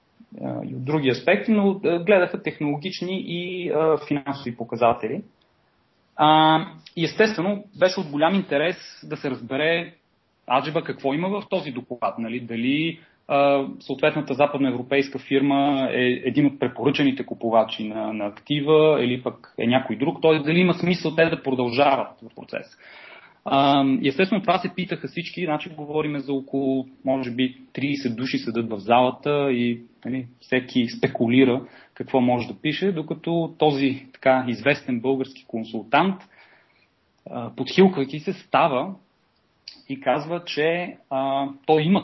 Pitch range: 130-165 Hz